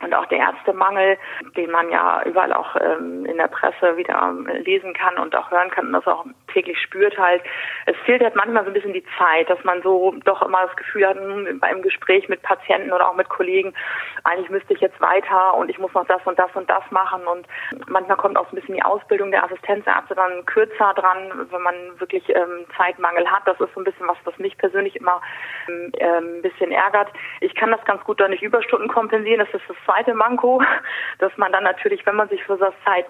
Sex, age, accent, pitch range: female, 30-49, German, 175-210 Hz